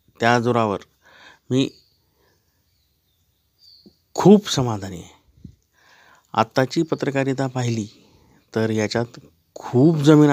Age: 50-69